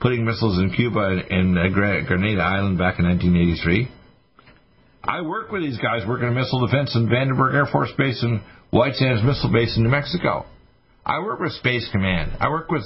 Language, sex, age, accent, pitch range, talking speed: English, male, 60-79, American, 100-140 Hz, 205 wpm